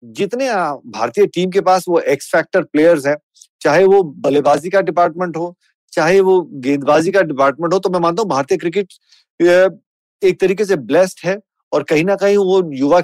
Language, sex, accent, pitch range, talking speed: Hindi, male, native, 160-200 Hz, 180 wpm